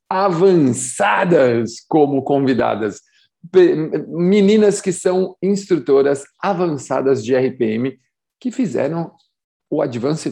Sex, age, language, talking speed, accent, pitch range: male, 50-69, Portuguese, 80 wpm, Brazilian, 130-175 Hz